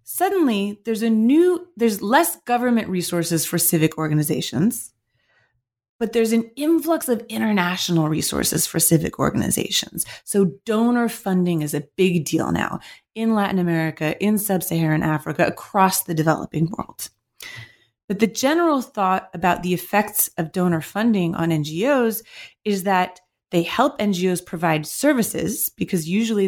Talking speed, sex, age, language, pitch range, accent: 140 wpm, female, 30-49, English, 170-225 Hz, American